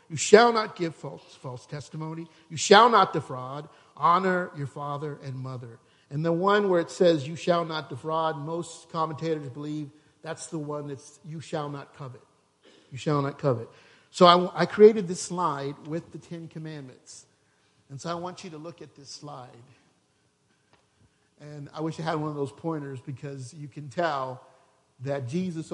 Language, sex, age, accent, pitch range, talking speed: English, male, 50-69, American, 135-170 Hz, 175 wpm